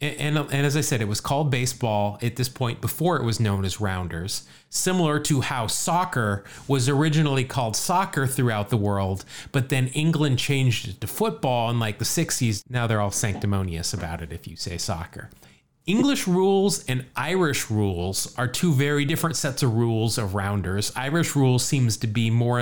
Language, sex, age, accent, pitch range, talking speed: English, male, 30-49, American, 105-140 Hz, 190 wpm